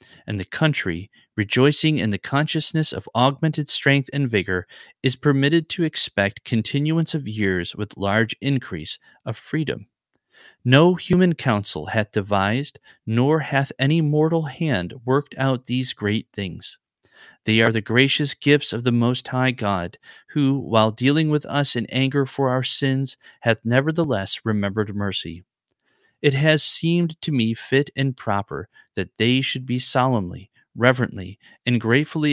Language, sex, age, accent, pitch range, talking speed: English, male, 30-49, American, 110-145 Hz, 145 wpm